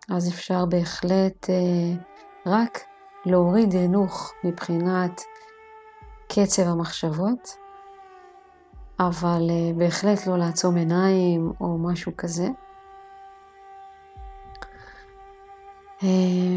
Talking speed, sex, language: 70 wpm, female, Hebrew